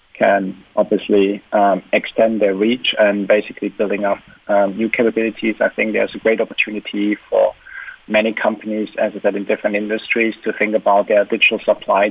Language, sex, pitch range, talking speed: English, male, 100-105 Hz, 170 wpm